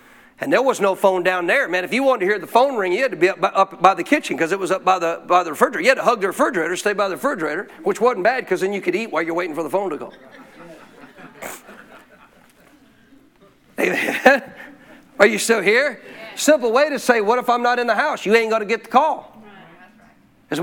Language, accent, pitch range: English, American, 195-240 Hz